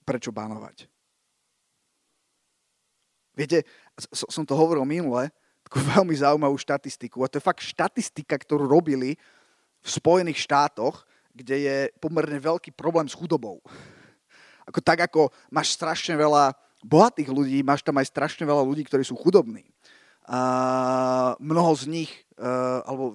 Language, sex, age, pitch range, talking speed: Slovak, male, 30-49, 130-155 Hz, 130 wpm